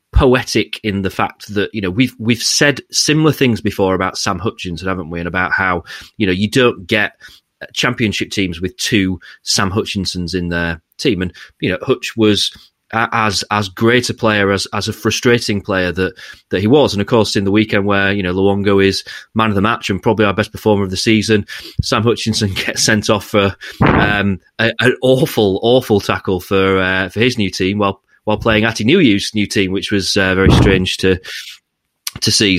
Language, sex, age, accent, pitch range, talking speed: English, male, 30-49, British, 95-115 Hz, 205 wpm